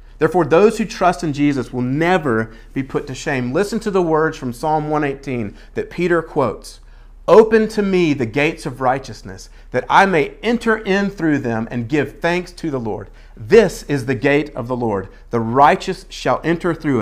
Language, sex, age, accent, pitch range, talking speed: English, male, 40-59, American, 120-170 Hz, 190 wpm